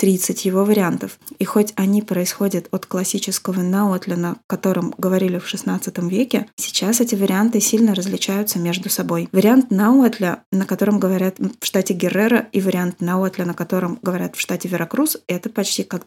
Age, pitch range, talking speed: 20-39, 190-230 Hz, 155 wpm